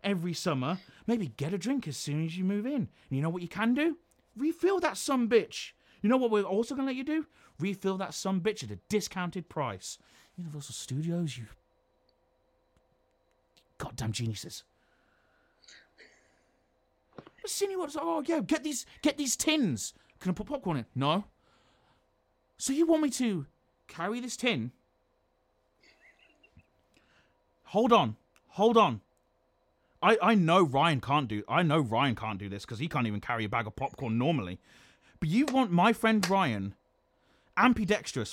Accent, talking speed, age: British, 160 wpm, 30-49